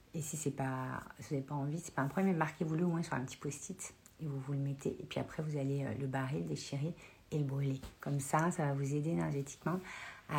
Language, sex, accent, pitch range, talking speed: French, female, French, 140-180 Hz, 265 wpm